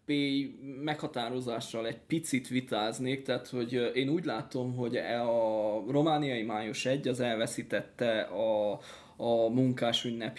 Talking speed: 120 wpm